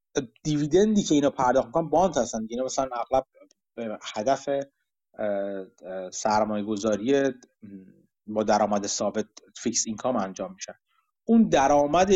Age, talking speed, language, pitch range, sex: 30-49, 110 wpm, Persian, 125-175 Hz, male